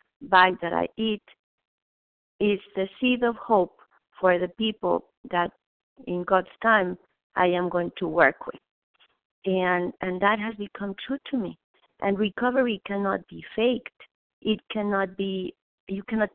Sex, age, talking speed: female, 50-69, 145 wpm